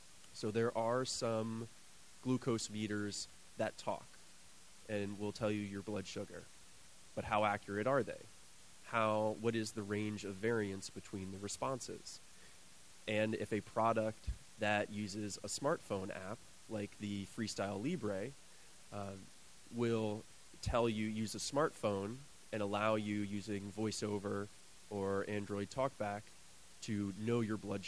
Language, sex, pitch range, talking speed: English, male, 100-110 Hz, 135 wpm